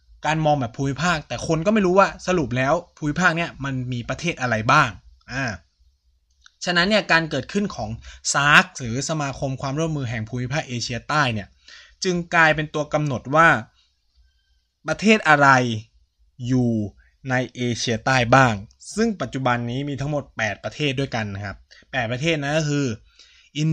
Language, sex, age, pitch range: Thai, male, 20-39, 115-160 Hz